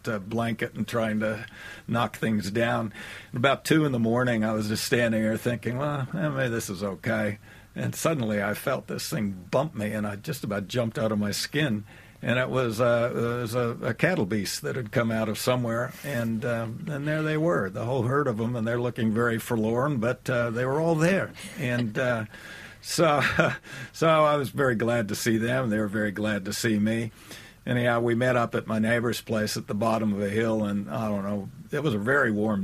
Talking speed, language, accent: 220 wpm, English, American